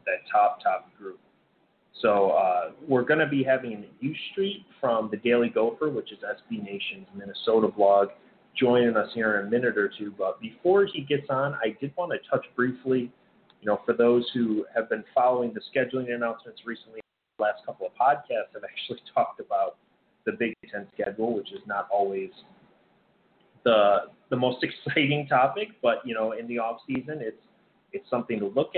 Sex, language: male, English